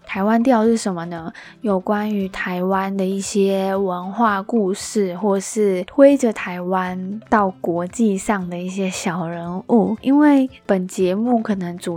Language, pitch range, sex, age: Chinese, 185-220 Hz, female, 20-39